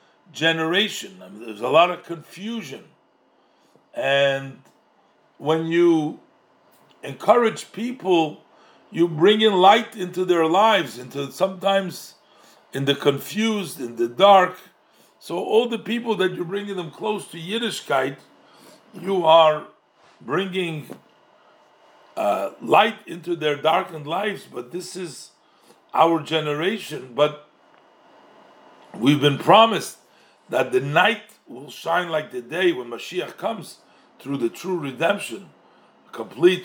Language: English